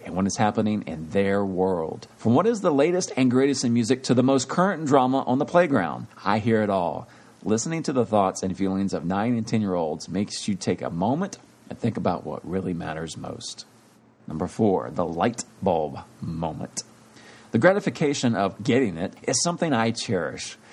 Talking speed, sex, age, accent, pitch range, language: 190 wpm, male, 40-59, American, 95-130 Hz, English